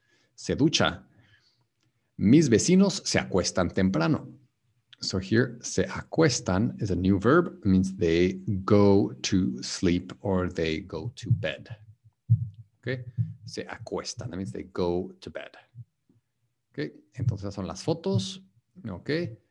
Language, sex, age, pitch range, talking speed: English, male, 50-69, 95-125 Hz, 120 wpm